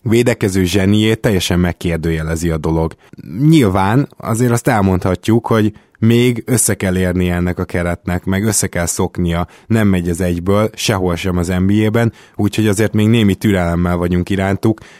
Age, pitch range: 20-39, 95-110 Hz